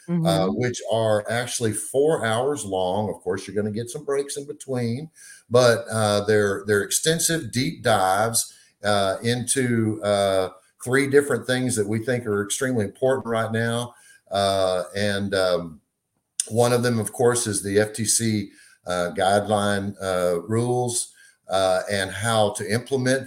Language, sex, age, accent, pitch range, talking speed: English, male, 50-69, American, 95-120 Hz, 150 wpm